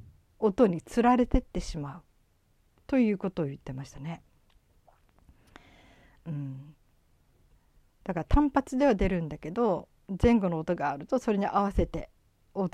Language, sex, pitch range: Japanese, female, 155-235 Hz